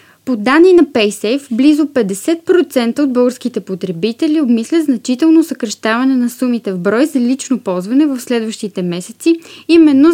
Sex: female